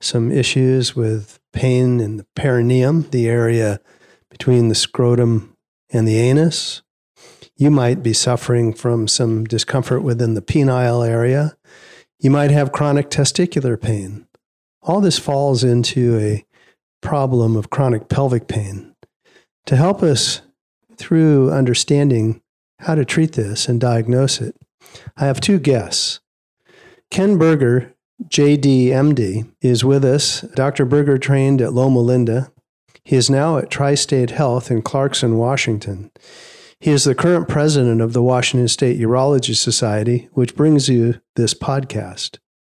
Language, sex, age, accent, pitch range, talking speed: English, male, 40-59, American, 115-140 Hz, 135 wpm